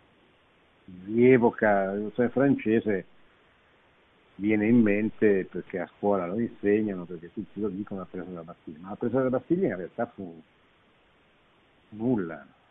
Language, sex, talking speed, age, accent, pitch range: Italian, male, 135 wpm, 50-69, native, 95-120 Hz